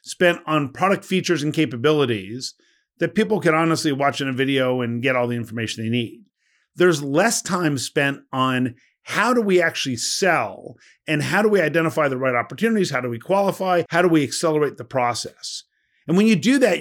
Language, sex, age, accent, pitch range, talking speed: English, male, 50-69, American, 135-165 Hz, 195 wpm